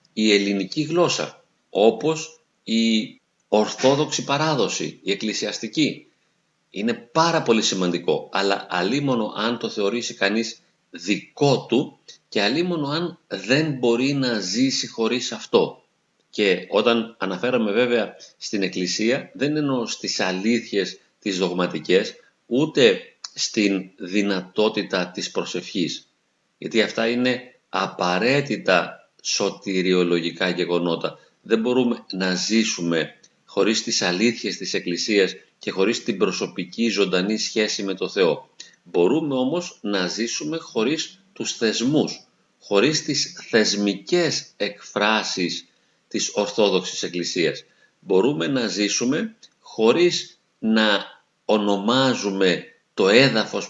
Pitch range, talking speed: 95-135 Hz, 105 wpm